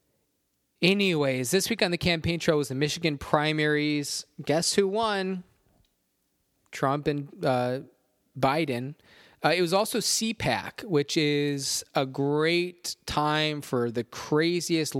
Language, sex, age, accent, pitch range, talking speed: English, male, 20-39, American, 115-150 Hz, 125 wpm